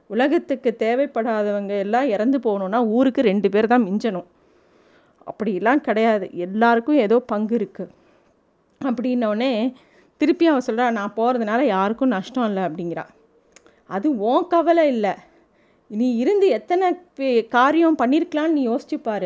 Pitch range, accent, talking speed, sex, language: 225-285 Hz, native, 120 wpm, female, Tamil